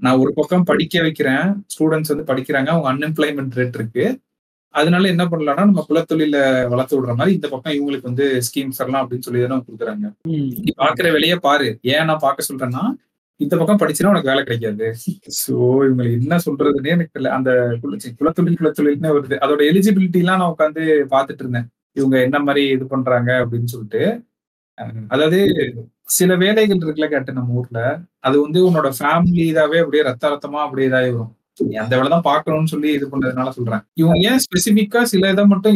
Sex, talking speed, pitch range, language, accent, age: male, 160 wpm, 130-165 Hz, Tamil, native, 30-49